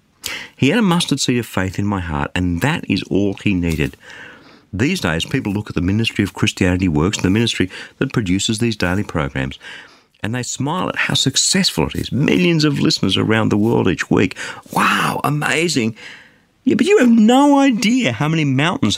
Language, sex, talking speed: English, male, 190 wpm